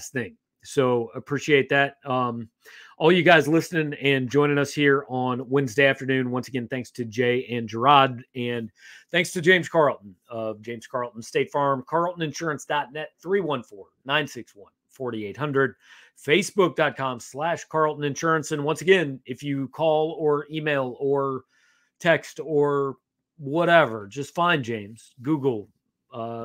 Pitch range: 125-155 Hz